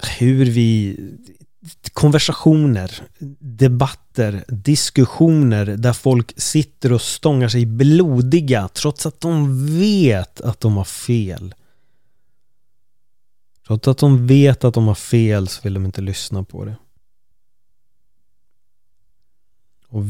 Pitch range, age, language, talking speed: 105-130 Hz, 30-49, Swedish, 105 wpm